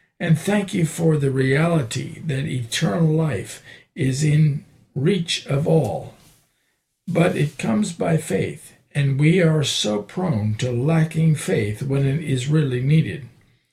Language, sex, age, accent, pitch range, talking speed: English, male, 50-69, American, 125-160 Hz, 140 wpm